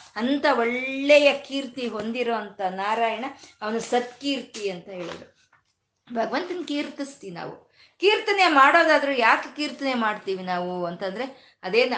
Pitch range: 205-275 Hz